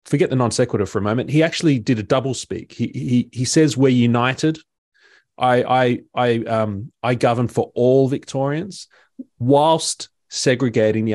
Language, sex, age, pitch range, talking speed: English, male, 30-49, 115-150 Hz, 160 wpm